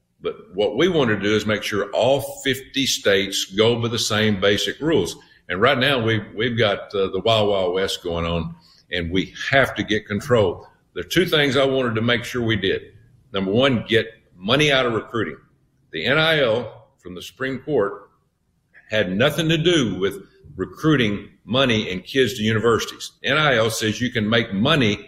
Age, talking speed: 50-69, 185 wpm